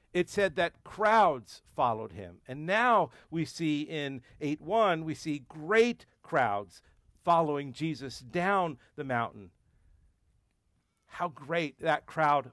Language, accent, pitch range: English, American, 145-190 Hz